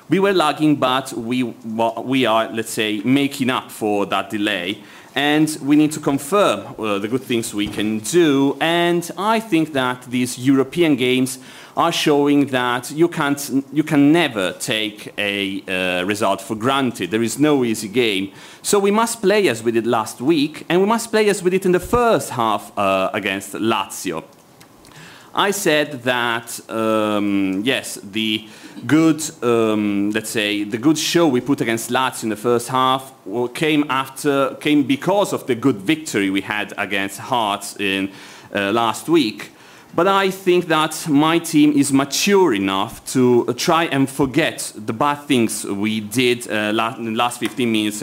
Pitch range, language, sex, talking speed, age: 110-155 Hz, Italian, male, 170 wpm, 40-59